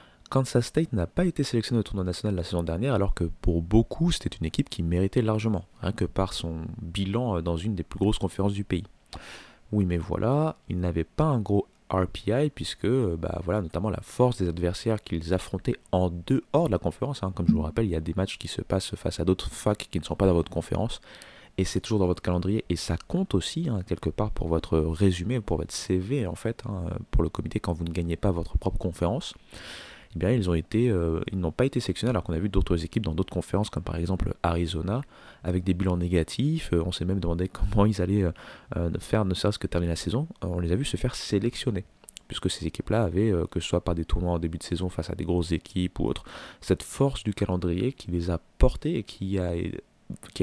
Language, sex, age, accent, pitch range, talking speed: French, male, 20-39, French, 85-110 Hz, 240 wpm